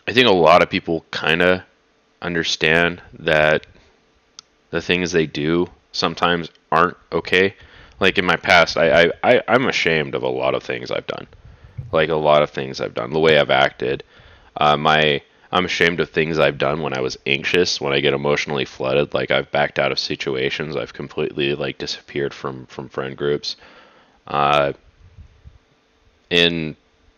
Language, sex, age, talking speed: English, male, 20-39, 170 wpm